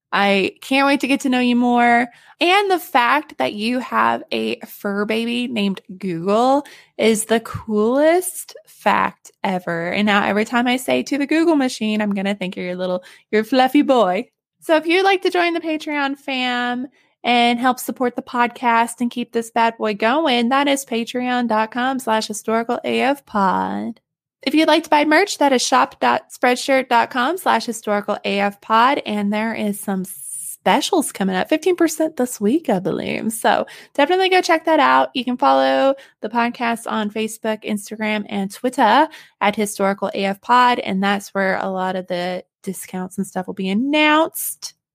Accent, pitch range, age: American, 205-275 Hz, 20-39